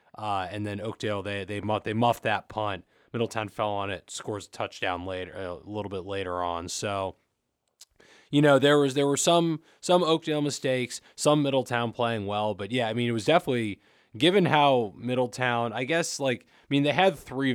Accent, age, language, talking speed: American, 20-39, English, 195 wpm